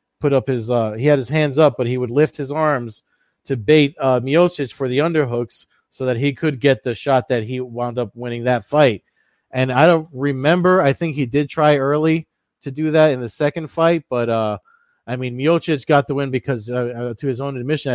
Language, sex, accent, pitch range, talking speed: English, male, American, 125-145 Hz, 225 wpm